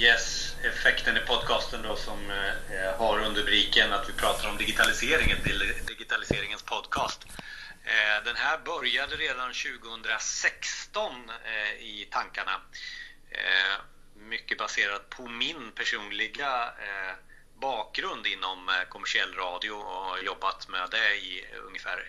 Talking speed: 100 wpm